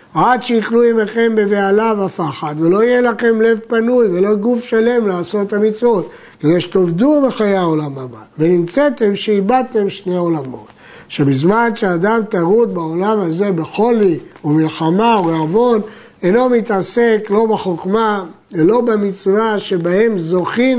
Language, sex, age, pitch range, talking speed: Hebrew, male, 60-79, 180-225 Hz, 120 wpm